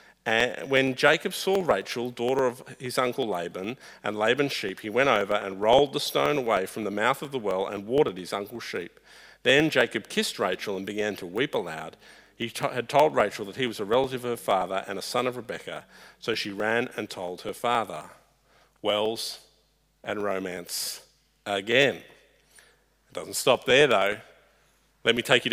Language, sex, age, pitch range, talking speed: English, male, 50-69, 110-140 Hz, 180 wpm